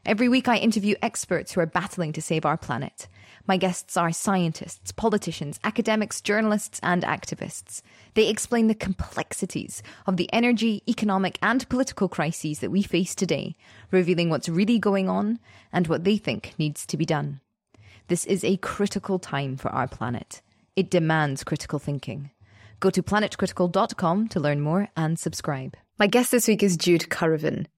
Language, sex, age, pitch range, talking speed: English, female, 20-39, 155-200 Hz, 165 wpm